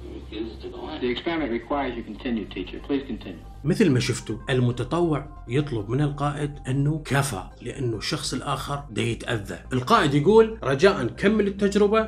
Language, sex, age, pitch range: Arabic, male, 30-49, 130-175 Hz